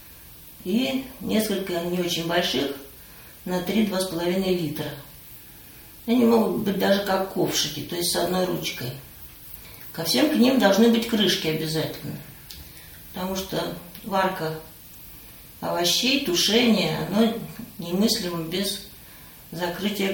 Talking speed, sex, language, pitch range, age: 105 wpm, female, Russian, 160-200 Hz, 40-59